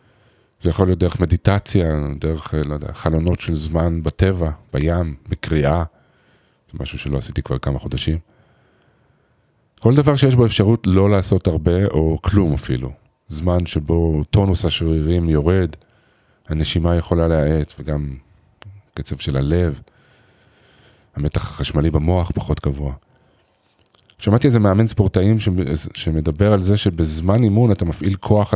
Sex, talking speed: male, 130 wpm